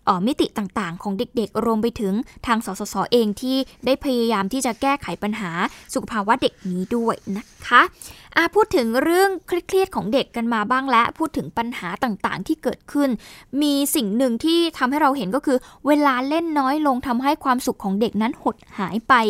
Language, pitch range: Thai, 225-285 Hz